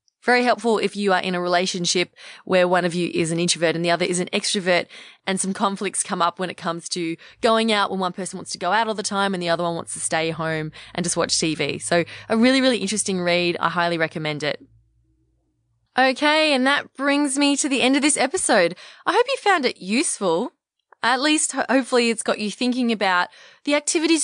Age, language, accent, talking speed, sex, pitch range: 20-39, English, Australian, 225 wpm, female, 170-240 Hz